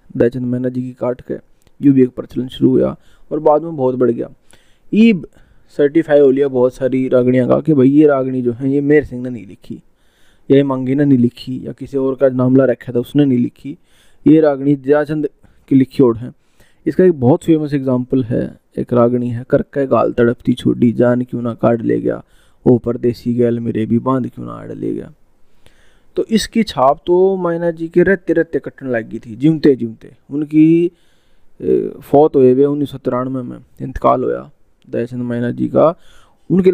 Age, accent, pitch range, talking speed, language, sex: 20-39, native, 125-145 Hz, 190 wpm, Hindi, male